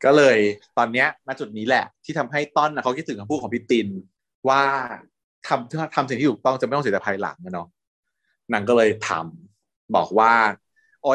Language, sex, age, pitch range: Thai, male, 20-39, 110-170 Hz